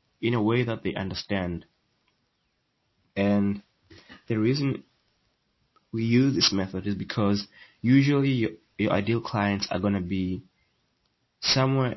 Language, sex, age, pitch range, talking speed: English, male, 20-39, 95-115 Hz, 125 wpm